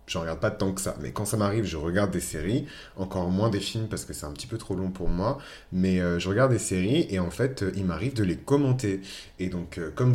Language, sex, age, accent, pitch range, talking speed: French, male, 30-49, French, 90-110 Hz, 280 wpm